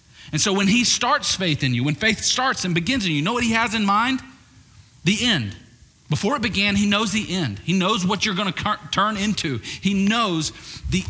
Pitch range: 130-190 Hz